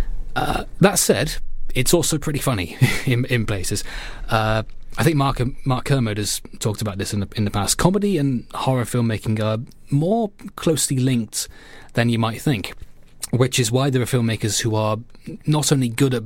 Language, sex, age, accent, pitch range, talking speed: English, male, 20-39, British, 105-135 Hz, 180 wpm